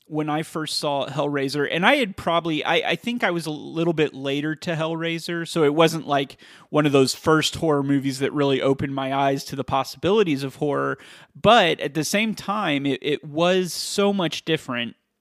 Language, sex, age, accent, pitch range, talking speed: English, male, 30-49, American, 140-180 Hz, 200 wpm